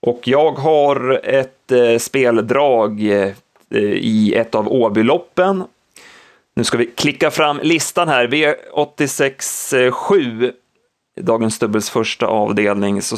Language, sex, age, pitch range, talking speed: Swedish, male, 30-49, 110-135 Hz, 120 wpm